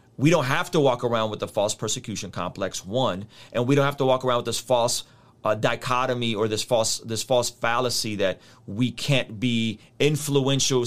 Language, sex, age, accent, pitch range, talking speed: English, male, 30-49, American, 105-130 Hz, 195 wpm